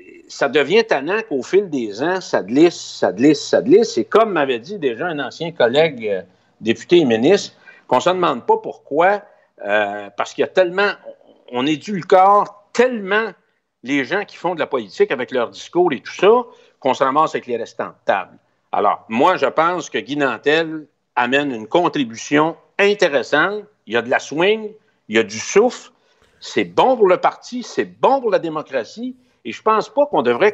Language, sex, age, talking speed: French, male, 60-79, 200 wpm